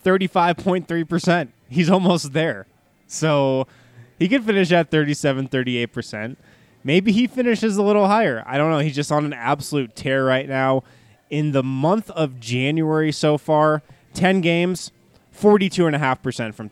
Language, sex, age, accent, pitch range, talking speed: English, male, 20-39, American, 125-165 Hz, 135 wpm